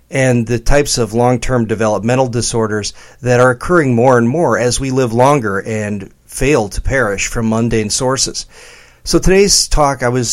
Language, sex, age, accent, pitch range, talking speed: English, male, 40-59, American, 110-130 Hz, 170 wpm